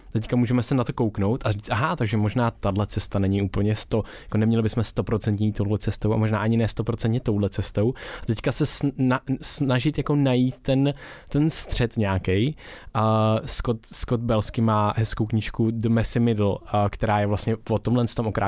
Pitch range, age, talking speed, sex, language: 110-135 Hz, 20-39, 180 wpm, male, Czech